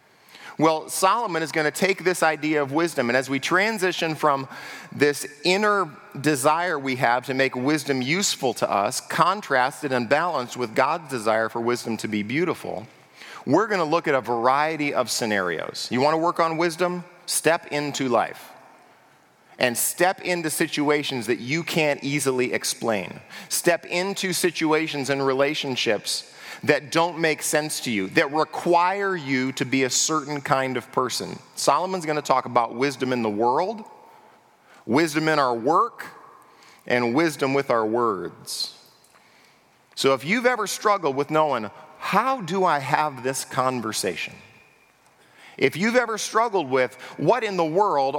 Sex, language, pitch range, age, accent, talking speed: male, English, 130-175 Hz, 40-59, American, 155 wpm